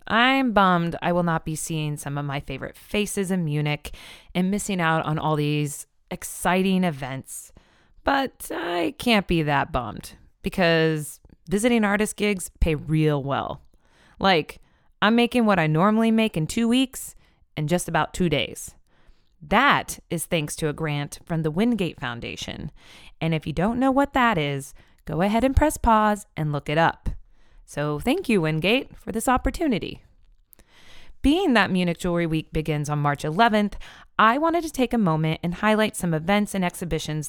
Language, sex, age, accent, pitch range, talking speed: English, female, 20-39, American, 155-215 Hz, 170 wpm